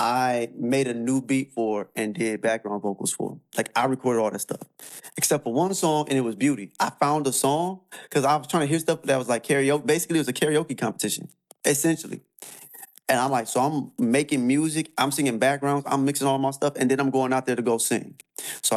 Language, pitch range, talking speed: English, 115-150 Hz, 230 wpm